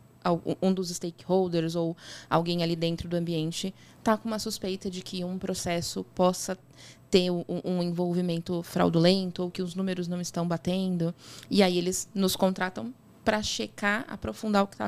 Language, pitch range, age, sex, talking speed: Portuguese, 170-195 Hz, 20-39, female, 160 wpm